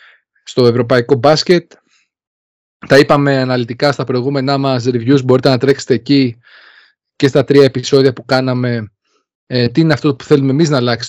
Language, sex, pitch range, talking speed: Greek, male, 125-155 Hz, 155 wpm